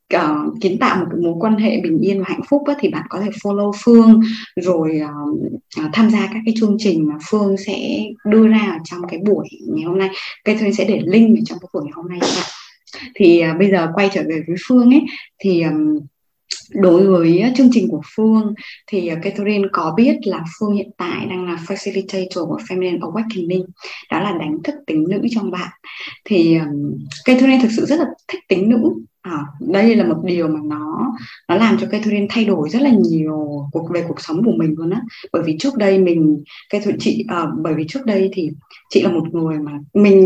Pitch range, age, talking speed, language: 170-245 Hz, 20-39, 215 wpm, Vietnamese